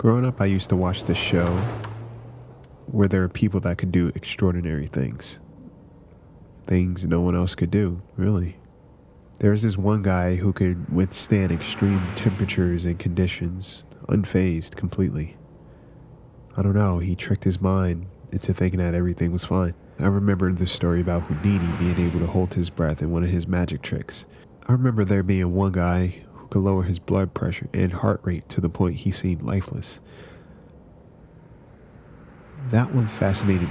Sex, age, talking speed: male, 20-39, 160 wpm